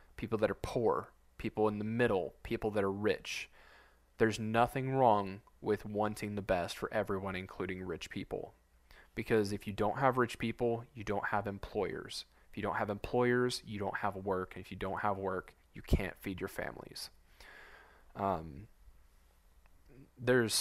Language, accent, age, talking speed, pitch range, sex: English, American, 20-39, 165 wpm, 95-115 Hz, male